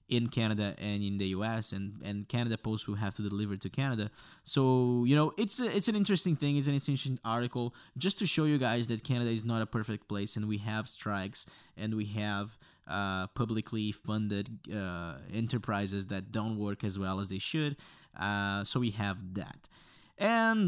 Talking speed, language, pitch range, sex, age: 195 wpm, English, 105-135 Hz, male, 20-39